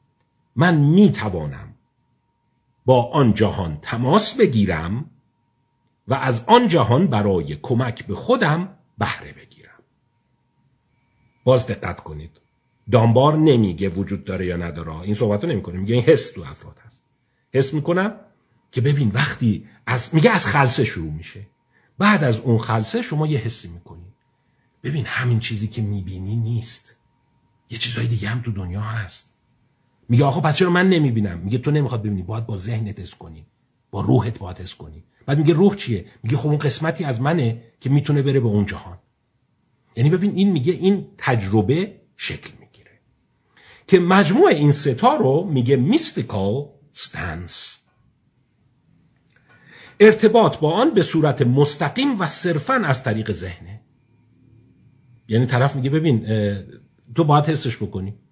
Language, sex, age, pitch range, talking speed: Persian, male, 50-69, 110-145 Hz, 140 wpm